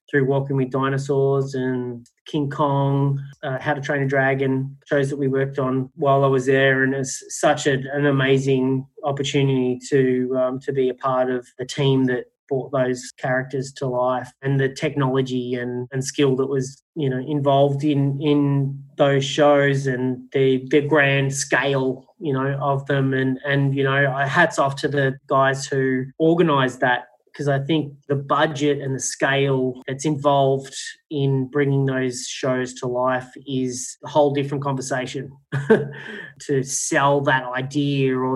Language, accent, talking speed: English, Australian, 165 wpm